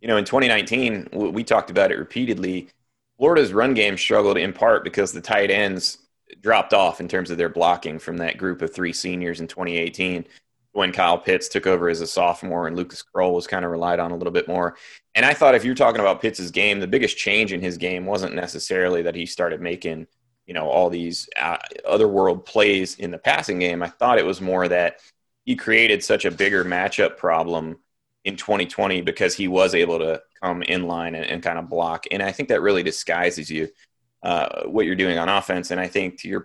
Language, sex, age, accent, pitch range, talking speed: English, male, 30-49, American, 85-95 Hz, 220 wpm